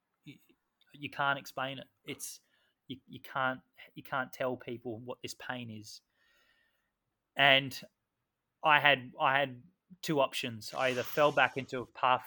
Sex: male